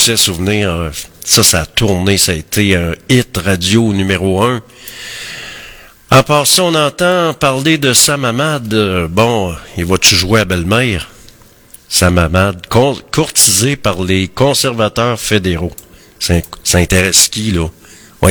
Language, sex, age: French, male, 50-69